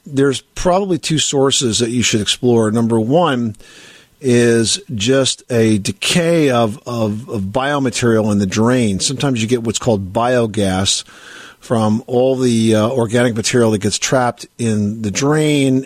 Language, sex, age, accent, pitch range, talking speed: English, male, 50-69, American, 110-130 Hz, 150 wpm